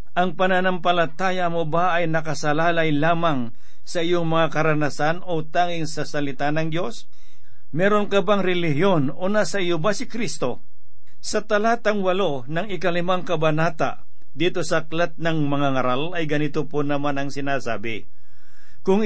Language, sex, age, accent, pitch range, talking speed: Filipino, male, 50-69, native, 140-175 Hz, 150 wpm